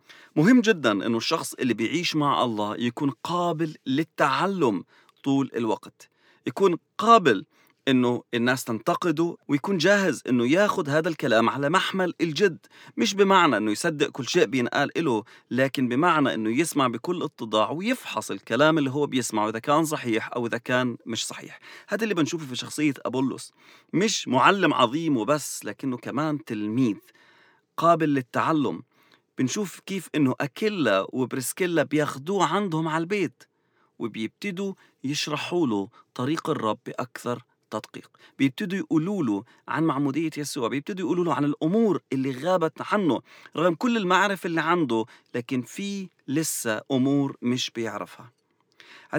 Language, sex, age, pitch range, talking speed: English, male, 40-59, 120-175 Hz, 130 wpm